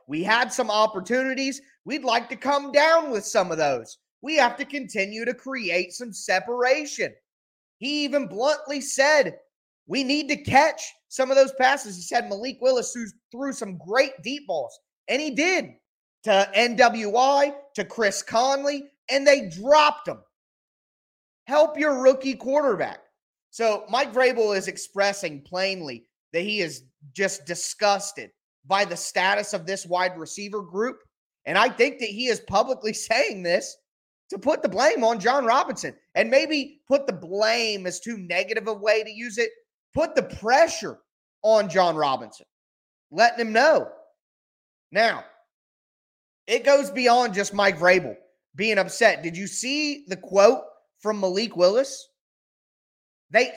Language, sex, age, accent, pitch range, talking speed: English, male, 30-49, American, 200-275 Hz, 150 wpm